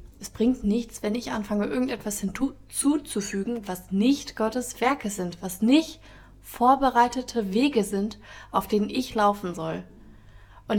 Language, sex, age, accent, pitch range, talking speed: German, female, 20-39, German, 195-230 Hz, 135 wpm